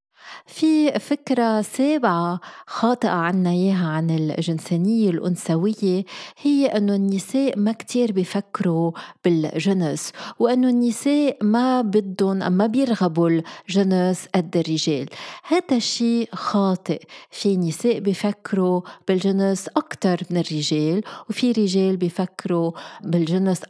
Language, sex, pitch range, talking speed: Arabic, female, 175-220 Hz, 95 wpm